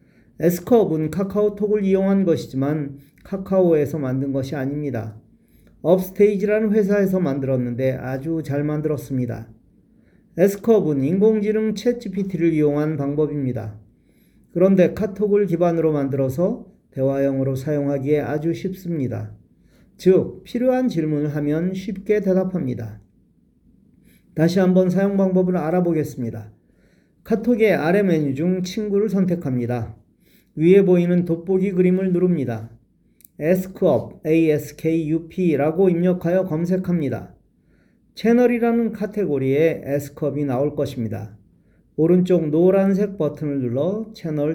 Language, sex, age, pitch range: Korean, male, 40-59, 140-195 Hz